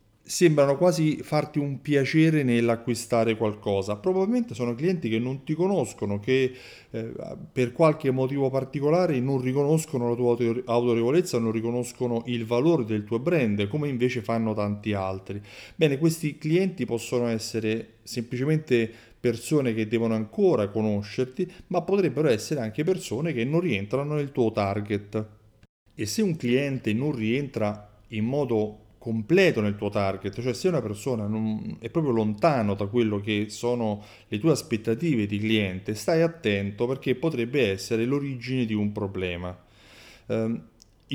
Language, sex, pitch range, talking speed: Italian, male, 105-145 Hz, 140 wpm